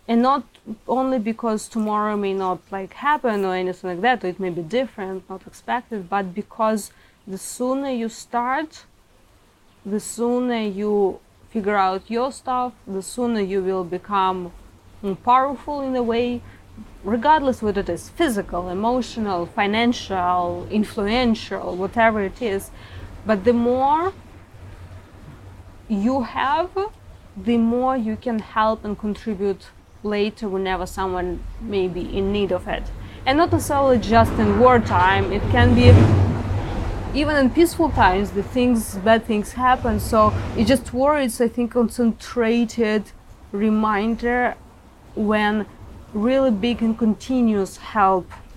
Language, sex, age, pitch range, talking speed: English, female, 20-39, 190-240 Hz, 130 wpm